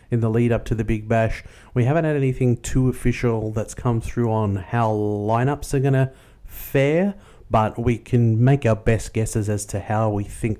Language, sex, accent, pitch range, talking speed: English, male, Australian, 110-125 Hz, 205 wpm